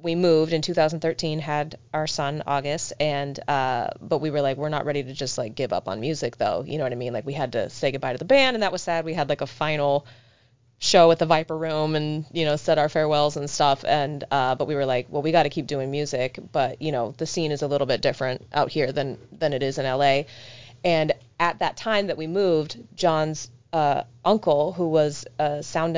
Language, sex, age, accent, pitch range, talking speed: English, female, 30-49, American, 135-160 Hz, 245 wpm